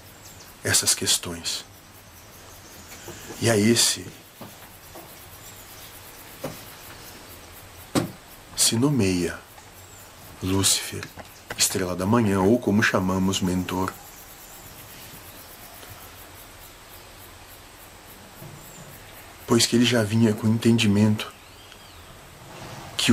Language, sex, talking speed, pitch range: Portuguese, male, 60 wpm, 95-105 Hz